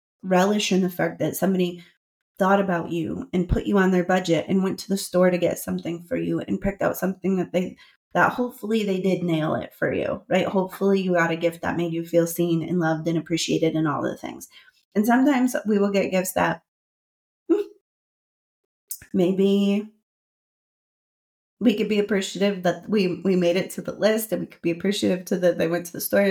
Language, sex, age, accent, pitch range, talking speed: English, female, 30-49, American, 175-200 Hz, 205 wpm